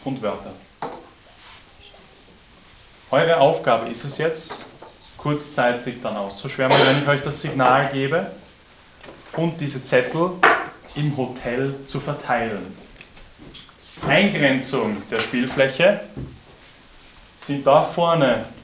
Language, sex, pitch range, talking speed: German, male, 135-185 Hz, 95 wpm